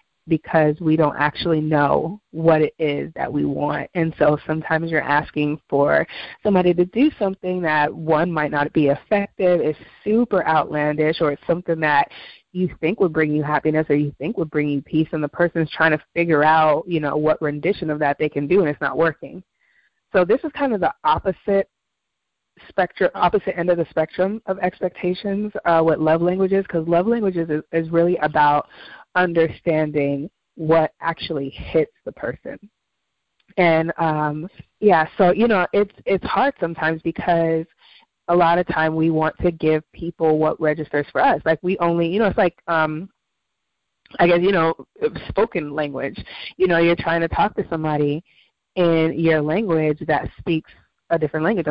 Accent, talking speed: American, 180 wpm